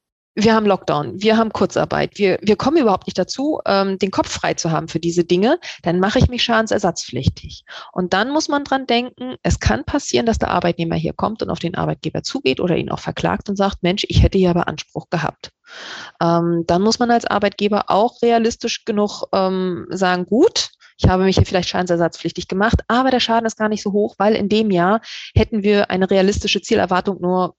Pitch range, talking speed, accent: 180-230 Hz, 205 wpm, German